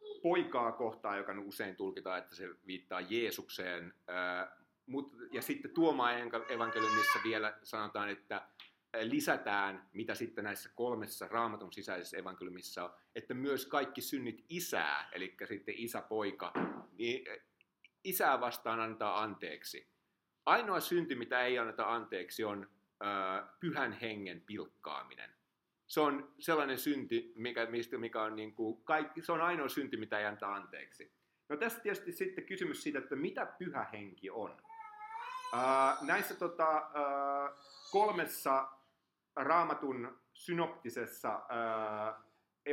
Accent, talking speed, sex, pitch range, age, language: native, 120 wpm, male, 105-165 Hz, 30-49, Finnish